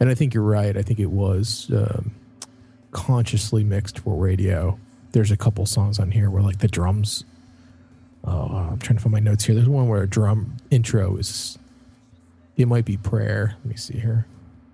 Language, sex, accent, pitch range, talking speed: English, male, American, 100-120 Hz, 190 wpm